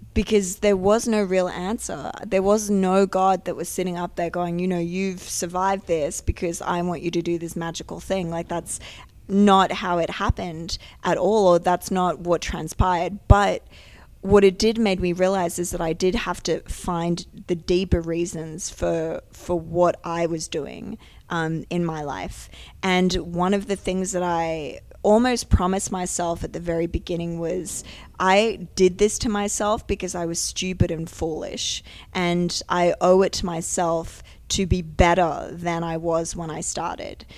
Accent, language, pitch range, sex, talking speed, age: Australian, English, 170-190 Hz, female, 180 wpm, 20-39